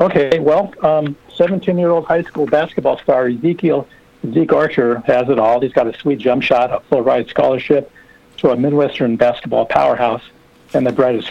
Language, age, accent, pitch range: English, 60-79, American, 125-145 Hz